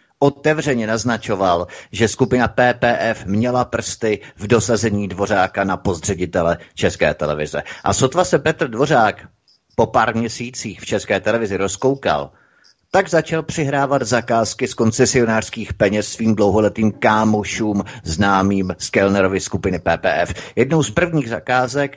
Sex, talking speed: male, 120 wpm